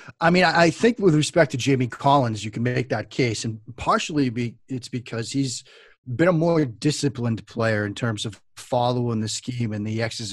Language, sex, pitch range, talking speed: English, male, 110-135 Hz, 200 wpm